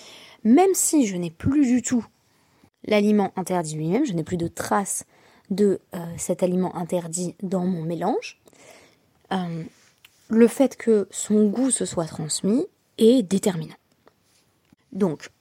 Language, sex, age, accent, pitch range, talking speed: French, female, 20-39, French, 175-235 Hz, 135 wpm